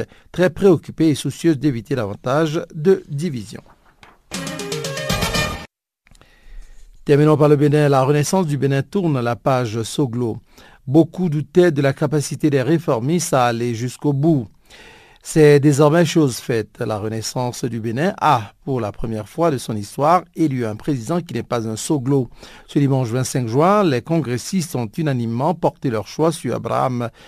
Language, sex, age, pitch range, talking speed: French, male, 50-69, 125-160 Hz, 150 wpm